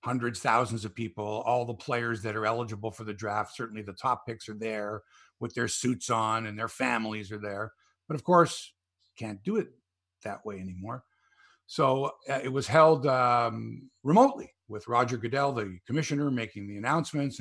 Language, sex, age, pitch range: English, male, 50-69, 115-155 Hz